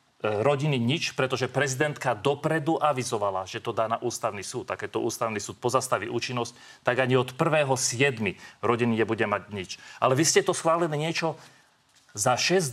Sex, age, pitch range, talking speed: male, 40-59, 130-155 Hz, 160 wpm